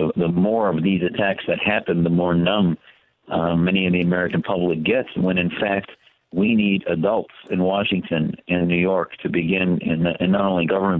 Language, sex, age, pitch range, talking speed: English, male, 50-69, 90-100 Hz, 195 wpm